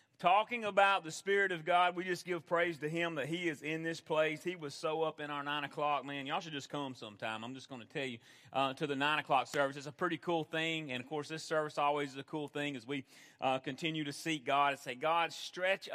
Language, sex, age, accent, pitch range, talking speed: English, male, 40-59, American, 155-185 Hz, 265 wpm